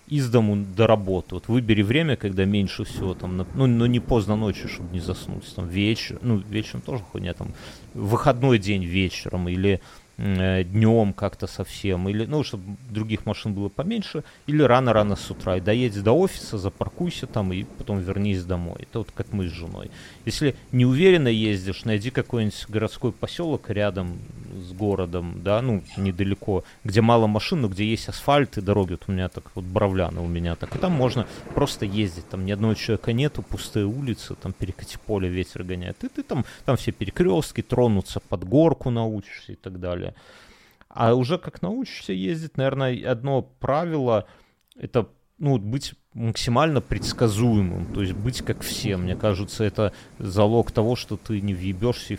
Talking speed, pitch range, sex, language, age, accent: 170 wpm, 95-125 Hz, male, Russian, 30-49, native